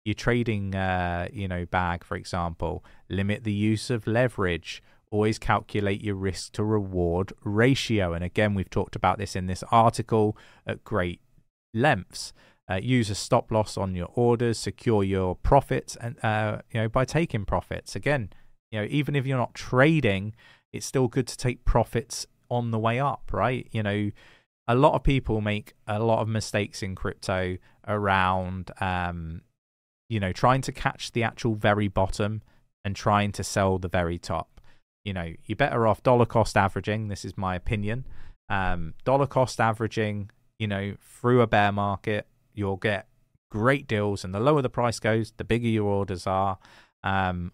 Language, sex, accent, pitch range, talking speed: English, male, British, 95-115 Hz, 175 wpm